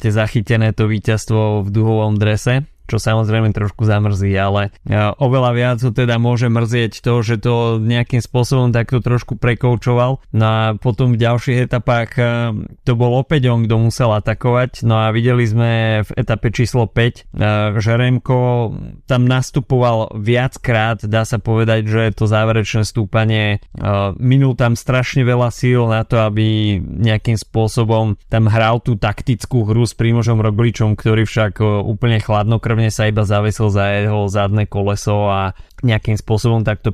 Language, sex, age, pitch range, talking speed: Slovak, male, 20-39, 105-120 Hz, 150 wpm